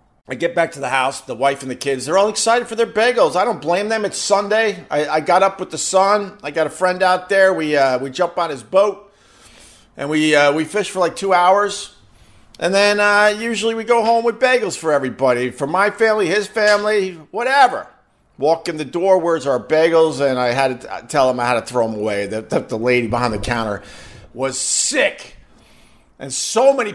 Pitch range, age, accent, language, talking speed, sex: 125-195 Hz, 50-69, American, English, 220 wpm, male